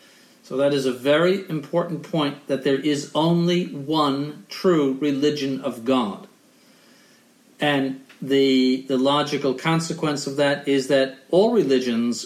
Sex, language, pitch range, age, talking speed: male, English, 135-195 Hz, 50-69, 130 wpm